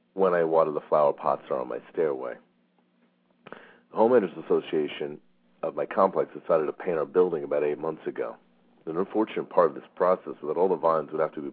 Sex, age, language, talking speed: male, 40-59, English, 210 wpm